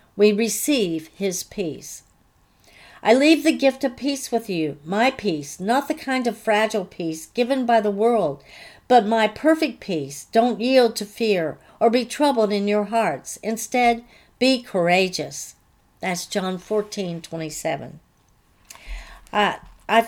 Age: 60-79